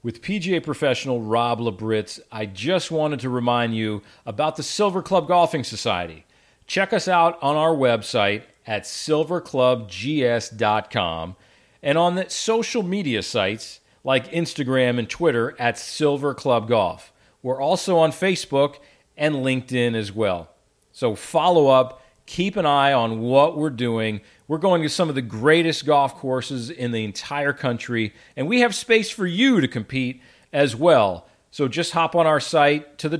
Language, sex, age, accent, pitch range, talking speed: English, male, 40-59, American, 120-165 Hz, 160 wpm